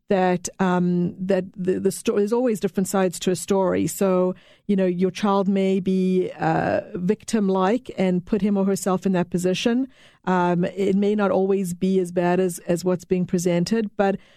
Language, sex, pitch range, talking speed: English, female, 185-205 Hz, 185 wpm